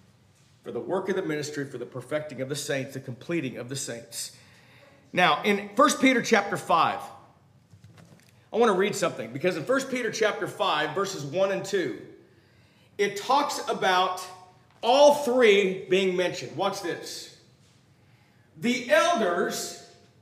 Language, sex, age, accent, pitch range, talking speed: English, male, 40-59, American, 185-255 Hz, 145 wpm